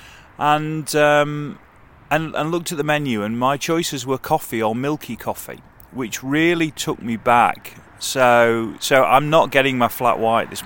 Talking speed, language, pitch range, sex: 170 wpm, English, 110-135 Hz, male